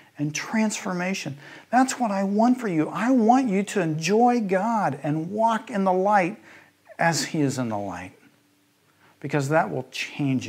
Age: 50-69